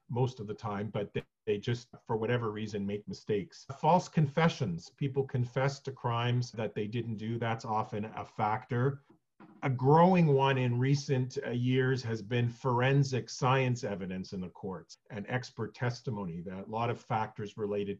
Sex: male